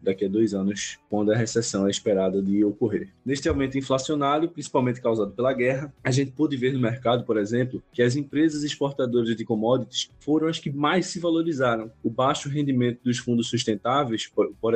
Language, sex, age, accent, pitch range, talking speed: Portuguese, male, 20-39, Brazilian, 110-135 Hz, 185 wpm